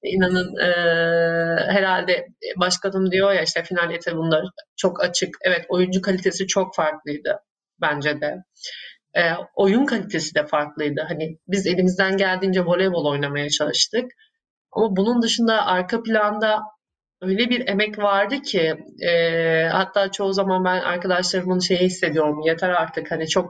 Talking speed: 135 wpm